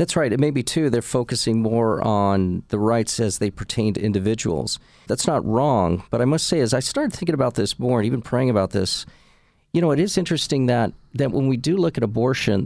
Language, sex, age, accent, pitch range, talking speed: English, male, 40-59, American, 110-135 Hz, 230 wpm